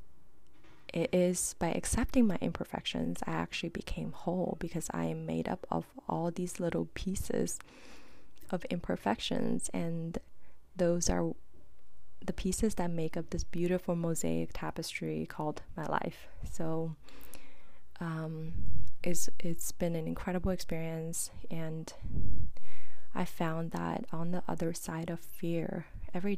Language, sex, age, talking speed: English, female, 20-39, 125 wpm